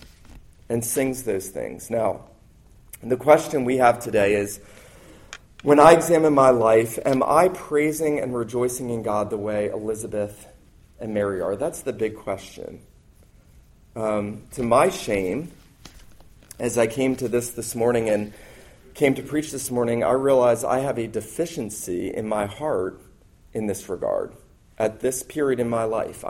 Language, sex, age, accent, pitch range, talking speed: English, male, 40-59, American, 115-145 Hz, 155 wpm